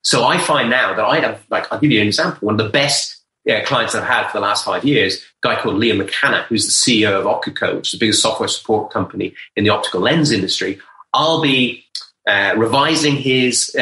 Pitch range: 105-125 Hz